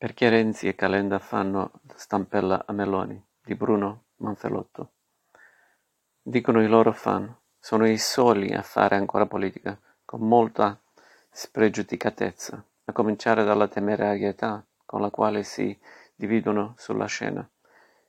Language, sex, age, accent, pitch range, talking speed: Italian, male, 50-69, native, 105-115 Hz, 125 wpm